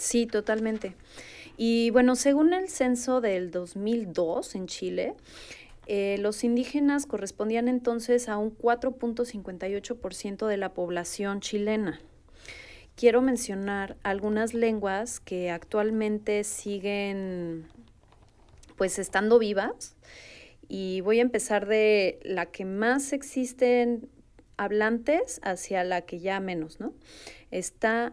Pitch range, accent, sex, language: 195-235 Hz, Mexican, female, Spanish